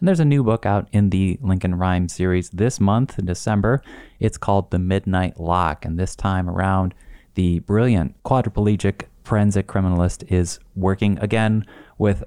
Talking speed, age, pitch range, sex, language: 160 wpm, 30-49, 90-110 Hz, male, English